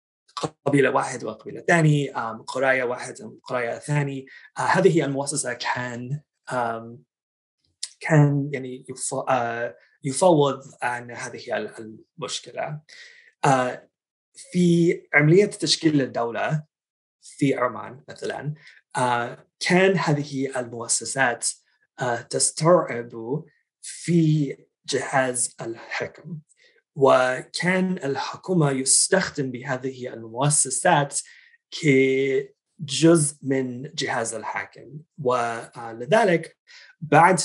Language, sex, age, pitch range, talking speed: Arabic, male, 30-49, 125-165 Hz, 65 wpm